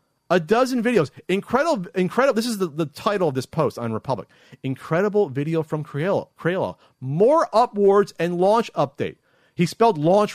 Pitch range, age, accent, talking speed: 125-180 Hz, 40-59, American, 155 wpm